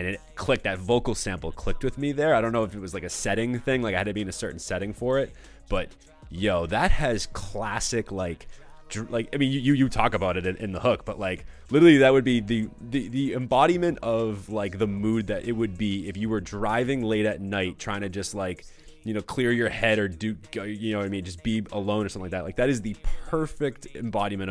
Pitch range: 95-115 Hz